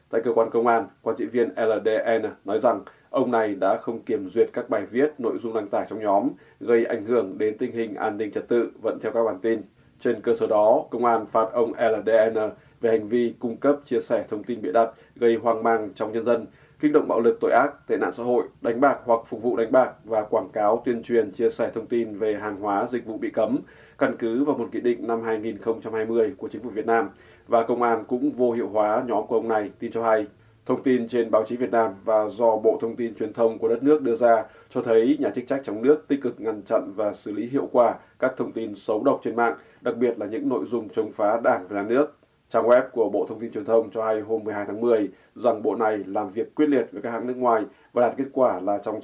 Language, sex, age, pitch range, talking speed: Vietnamese, male, 20-39, 110-120 Hz, 260 wpm